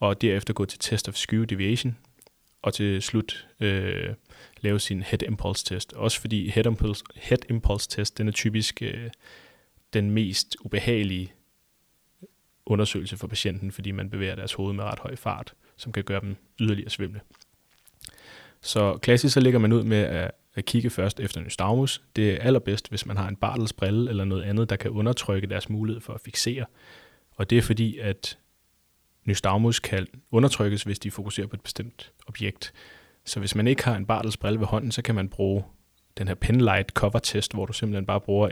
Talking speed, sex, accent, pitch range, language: 185 wpm, male, native, 100-115 Hz, Danish